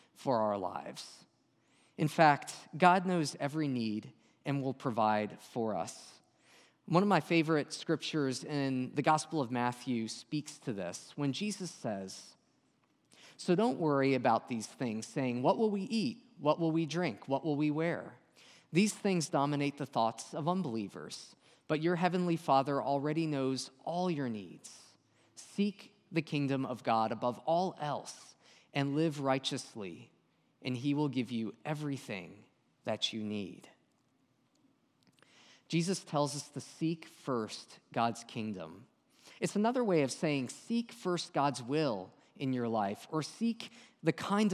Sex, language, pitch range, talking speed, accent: male, English, 125-170 Hz, 145 wpm, American